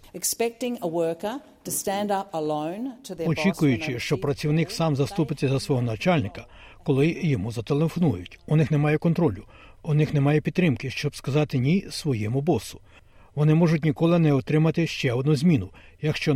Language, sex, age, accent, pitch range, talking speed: Ukrainian, male, 60-79, native, 120-160 Hz, 120 wpm